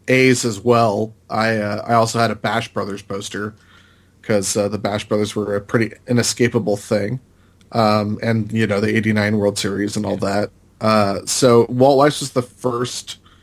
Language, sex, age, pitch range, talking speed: English, male, 30-49, 105-120 Hz, 180 wpm